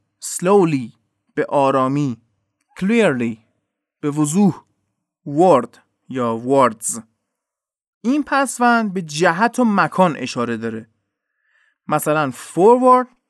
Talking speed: 85 wpm